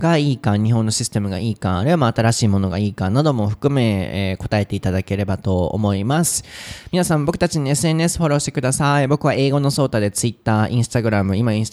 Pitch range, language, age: 110-150 Hz, Japanese, 20-39